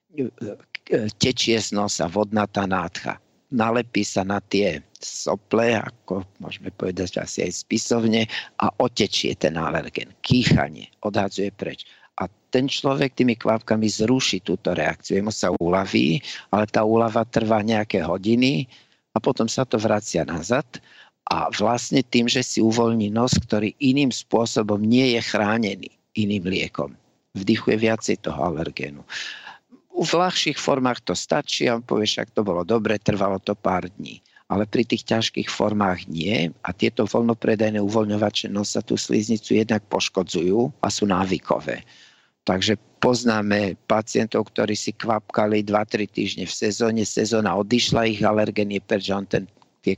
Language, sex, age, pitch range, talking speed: Slovak, male, 50-69, 100-115 Hz, 145 wpm